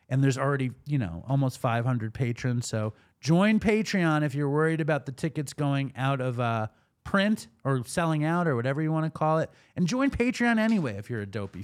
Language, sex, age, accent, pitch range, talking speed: English, male, 30-49, American, 110-145 Hz, 205 wpm